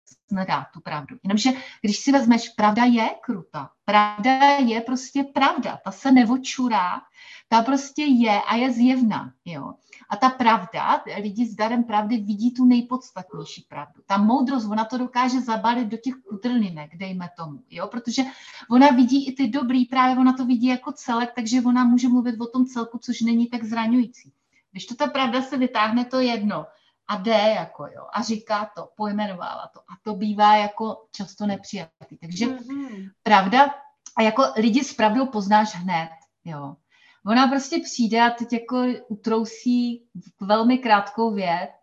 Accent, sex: native, female